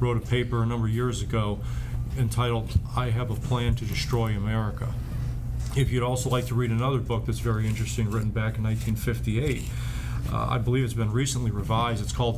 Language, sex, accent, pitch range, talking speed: English, male, American, 110-130 Hz, 195 wpm